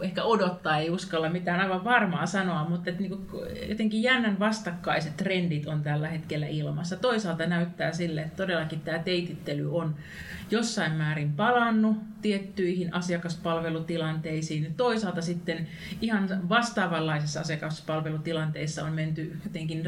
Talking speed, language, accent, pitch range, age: 120 wpm, Finnish, native, 160-200 Hz, 30-49